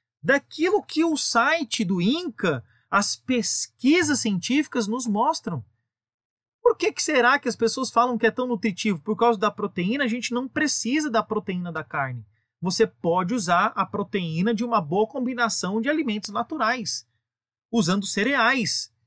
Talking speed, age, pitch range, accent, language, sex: 155 wpm, 30-49, 155-230 Hz, Brazilian, Portuguese, male